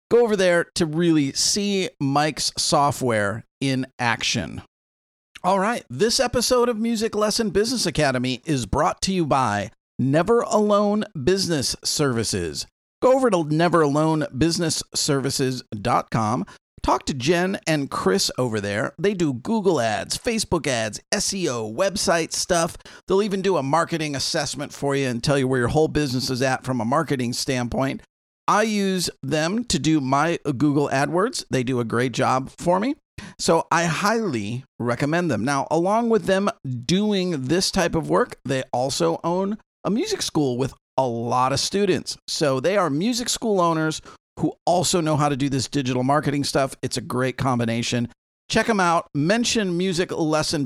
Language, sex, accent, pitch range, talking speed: English, male, American, 130-190 Hz, 160 wpm